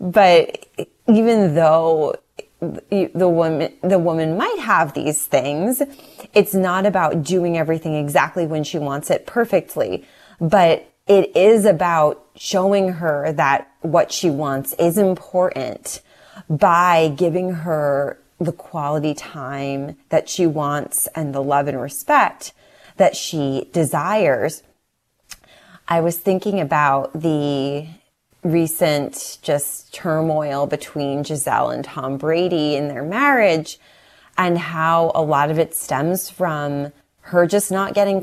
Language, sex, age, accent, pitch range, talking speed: English, female, 30-49, American, 150-185 Hz, 125 wpm